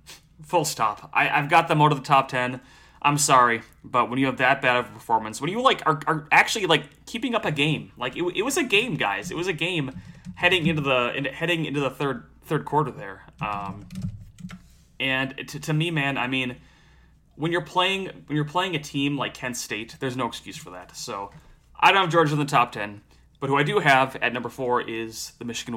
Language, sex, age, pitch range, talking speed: English, male, 30-49, 125-155 Hz, 230 wpm